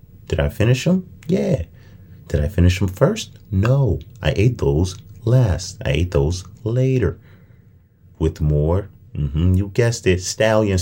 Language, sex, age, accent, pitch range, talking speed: English, male, 30-49, American, 85-115 Hz, 145 wpm